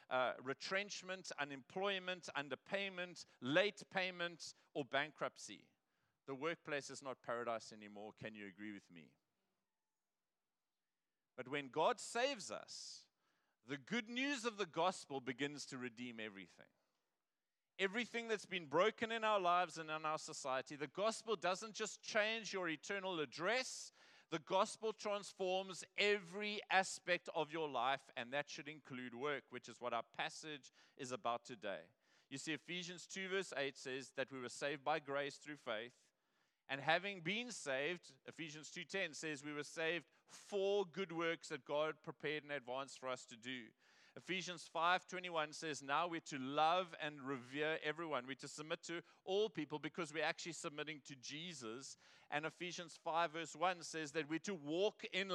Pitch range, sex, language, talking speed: 135-180 Hz, male, English, 155 wpm